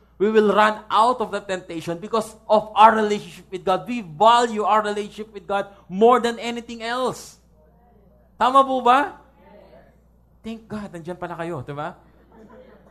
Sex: male